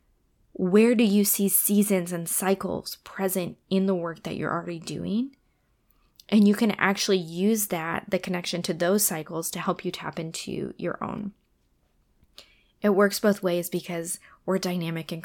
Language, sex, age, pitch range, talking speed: English, female, 20-39, 165-195 Hz, 160 wpm